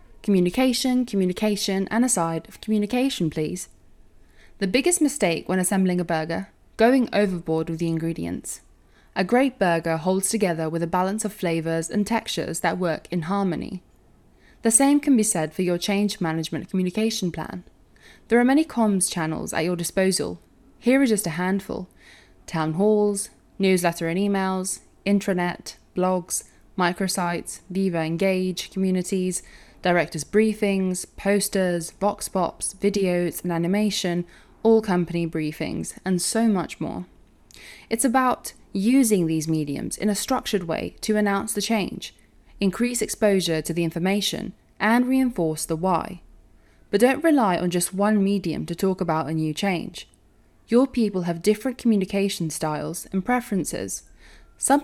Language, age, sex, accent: English, 10-29, female, British